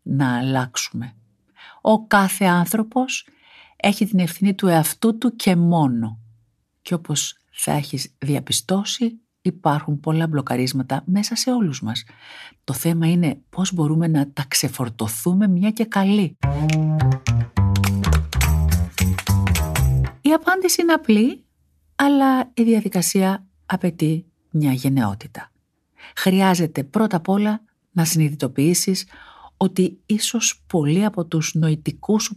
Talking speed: 110 wpm